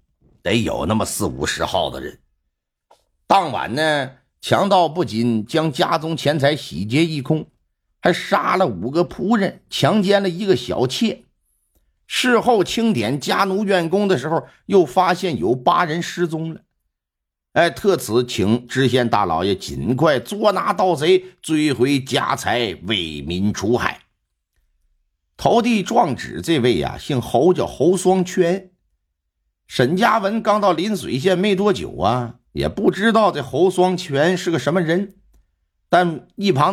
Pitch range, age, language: 110-185 Hz, 50-69, Chinese